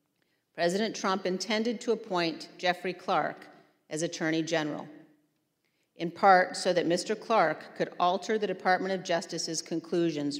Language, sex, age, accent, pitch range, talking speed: English, female, 50-69, American, 155-190 Hz, 135 wpm